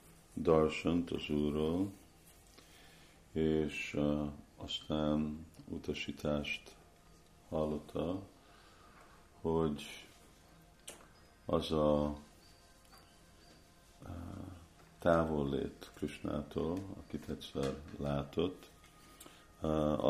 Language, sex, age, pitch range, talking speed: Hungarian, male, 50-69, 75-80 Hz, 55 wpm